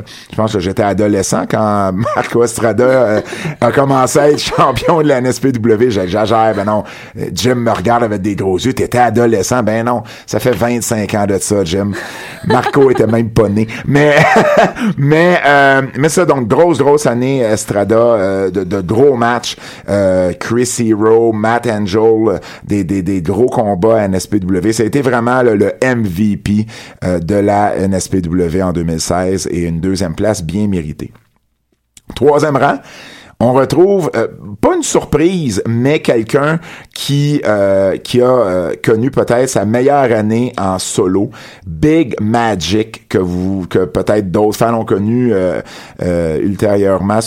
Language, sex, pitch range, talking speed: French, male, 95-125 Hz, 160 wpm